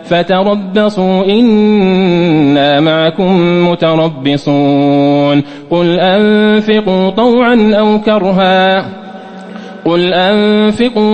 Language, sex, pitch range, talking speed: English, male, 160-190 Hz, 60 wpm